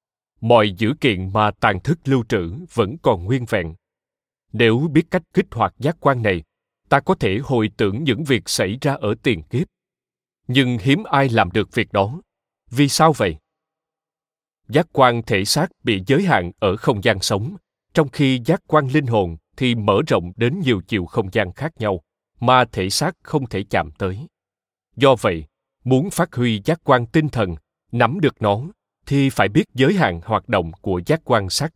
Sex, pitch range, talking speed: male, 105-150 Hz, 185 wpm